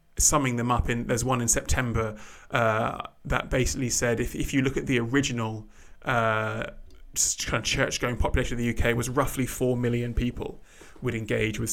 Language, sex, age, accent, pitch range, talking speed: English, male, 20-39, British, 115-135 Hz, 180 wpm